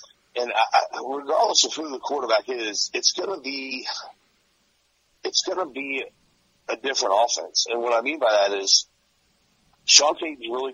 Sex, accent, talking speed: male, American, 150 wpm